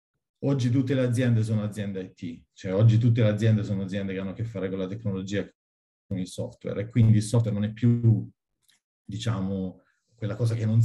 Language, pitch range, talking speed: Italian, 100-115 Hz, 205 wpm